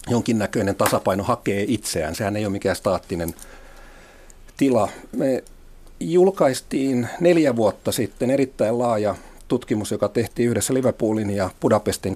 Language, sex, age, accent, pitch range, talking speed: Finnish, male, 50-69, native, 105-130 Hz, 120 wpm